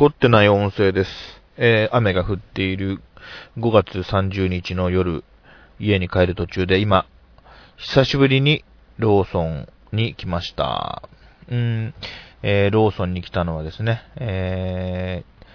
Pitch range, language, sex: 85-100 Hz, Japanese, male